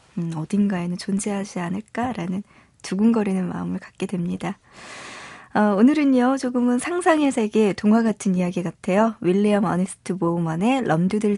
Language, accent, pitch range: Korean, native, 180-225 Hz